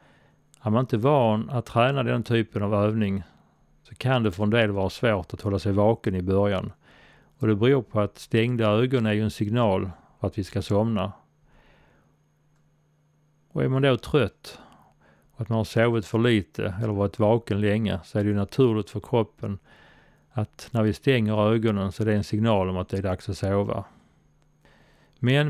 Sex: male